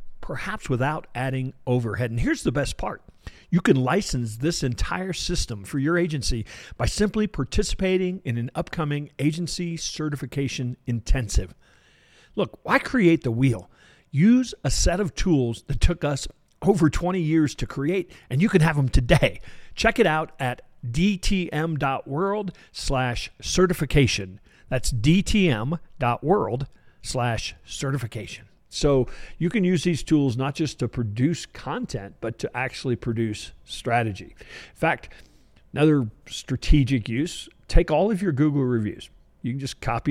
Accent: American